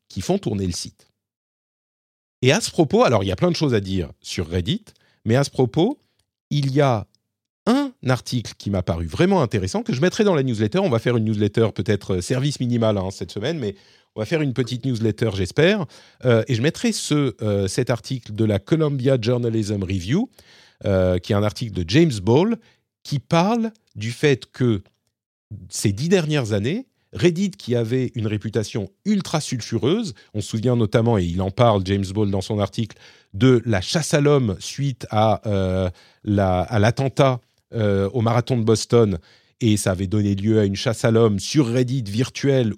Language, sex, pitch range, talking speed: French, male, 105-135 Hz, 190 wpm